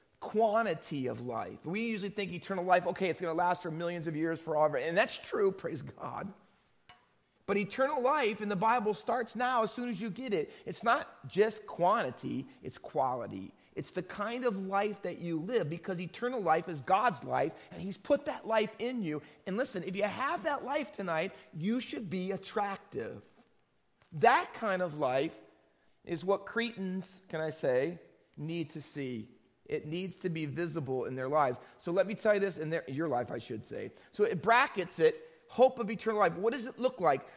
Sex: male